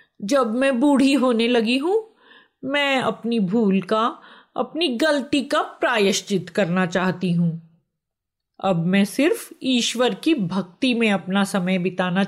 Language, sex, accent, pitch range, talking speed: Hindi, female, native, 190-305 Hz, 130 wpm